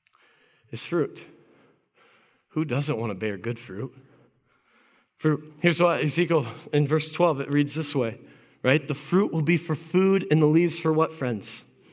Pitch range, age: 145-205 Hz, 40-59